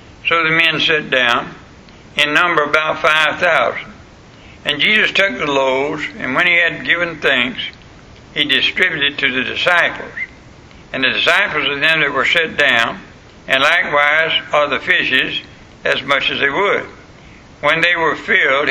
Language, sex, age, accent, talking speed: English, male, 60-79, American, 155 wpm